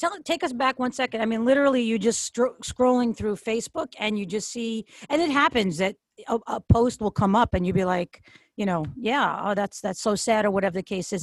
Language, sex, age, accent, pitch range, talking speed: English, female, 40-59, American, 215-260 Hz, 245 wpm